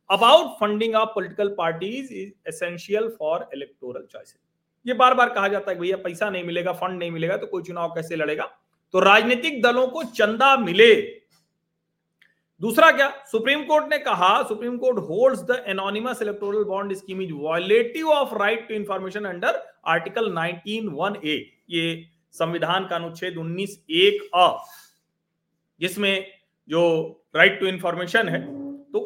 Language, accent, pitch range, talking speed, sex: Hindi, native, 180-250 Hz, 145 wpm, male